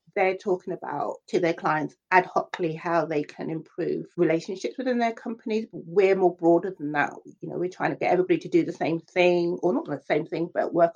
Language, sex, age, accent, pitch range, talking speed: English, female, 40-59, British, 175-225 Hz, 220 wpm